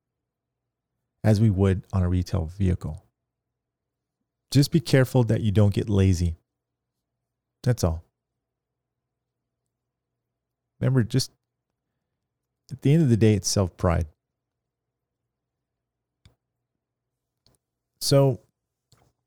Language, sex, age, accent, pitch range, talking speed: English, male, 40-59, American, 95-125 Hz, 90 wpm